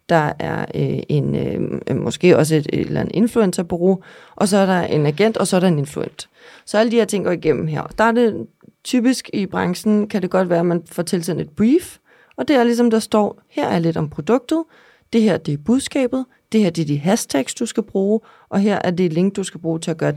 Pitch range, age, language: 165-220 Hz, 30-49, Danish